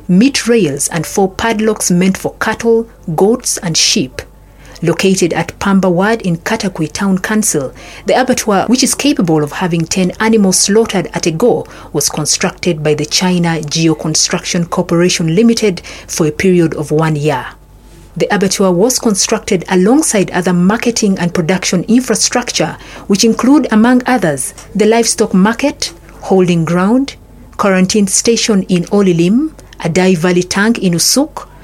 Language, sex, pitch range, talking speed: English, female, 175-225 Hz, 140 wpm